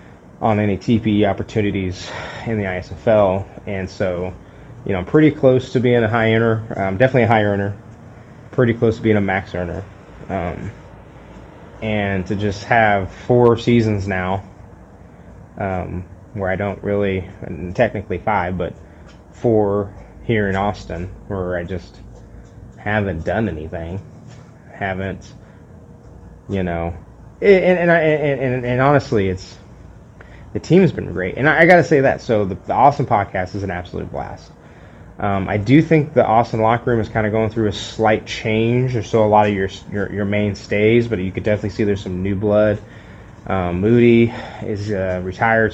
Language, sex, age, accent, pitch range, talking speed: English, male, 20-39, American, 95-115 Hz, 170 wpm